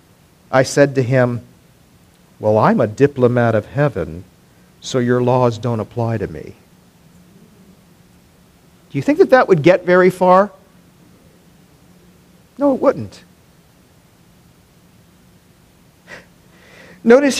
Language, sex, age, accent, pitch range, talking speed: English, male, 50-69, American, 135-185 Hz, 105 wpm